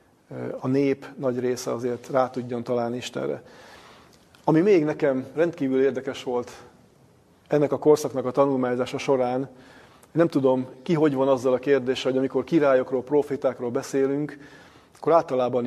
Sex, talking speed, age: male, 140 wpm, 40-59